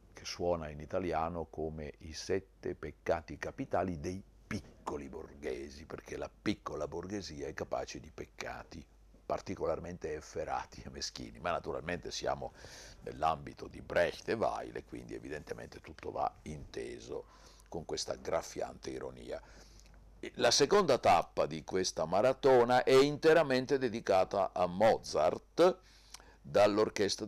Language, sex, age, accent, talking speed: Italian, male, 50-69, native, 115 wpm